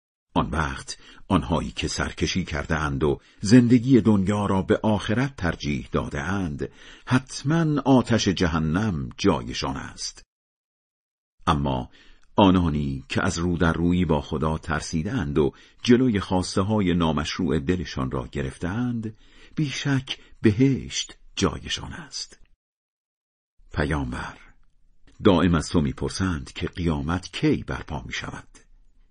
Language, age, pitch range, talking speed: Persian, 50-69, 75-125 Hz, 110 wpm